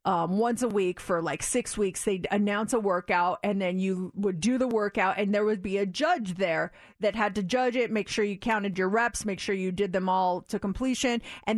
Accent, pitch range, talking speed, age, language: American, 190-240 Hz, 240 wpm, 30-49, English